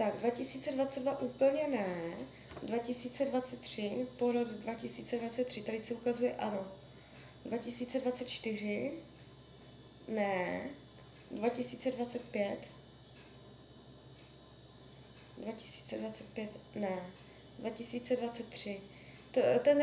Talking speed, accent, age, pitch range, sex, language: 60 wpm, native, 20-39, 210-255 Hz, female, Czech